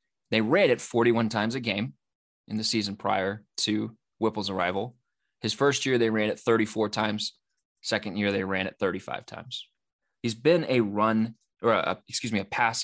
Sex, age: male, 20-39